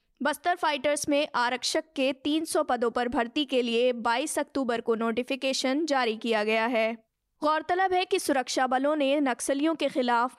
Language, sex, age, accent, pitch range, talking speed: Hindi, female, 20-39, native, 245-290 Hz, 160 wpm